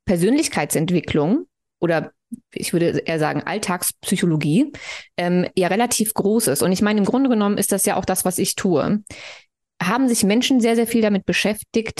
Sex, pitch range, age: female, 175-215 Hz, 20-39